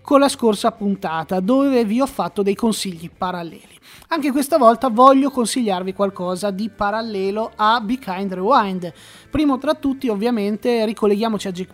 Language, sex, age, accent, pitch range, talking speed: Italian, male, 20-39, native, 185-240 Hz, 155 wpm